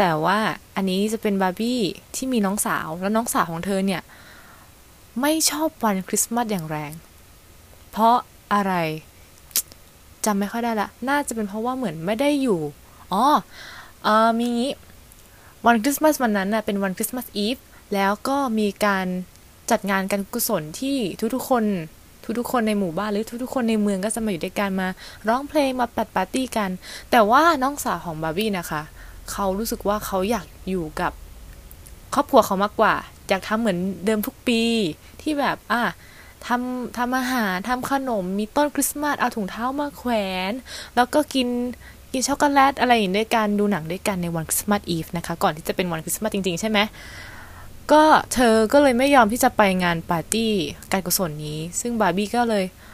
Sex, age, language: female, 20-39, Thai